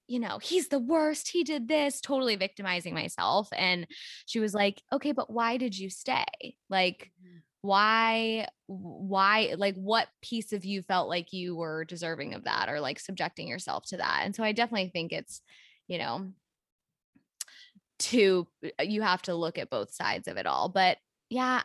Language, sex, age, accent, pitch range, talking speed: English, female, 10-29, American, 175-235 Hz, 175 wpm